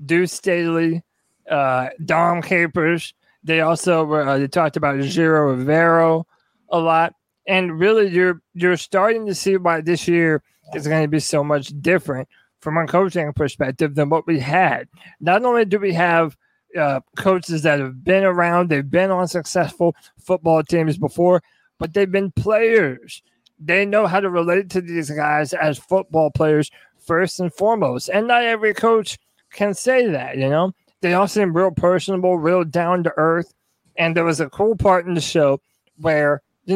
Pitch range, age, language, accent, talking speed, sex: 160-190 Hz, 20-39, English, American, 175 wpm, male